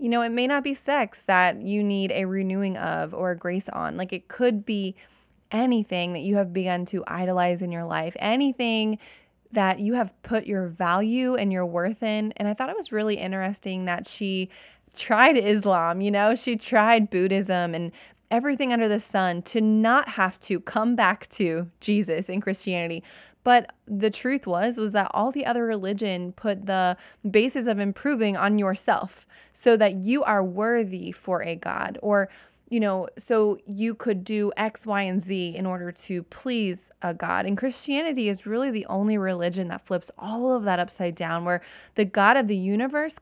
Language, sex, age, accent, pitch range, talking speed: English, female, 20-39, American, 185-225 Hz, 185 wpm